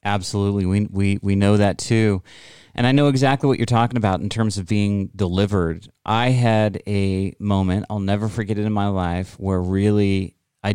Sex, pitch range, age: male, 90-105 Hz, 30-49